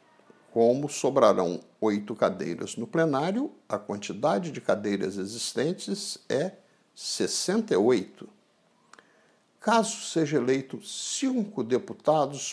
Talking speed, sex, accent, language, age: 85 wpm, male, Brazilian, Portuguese, 60-79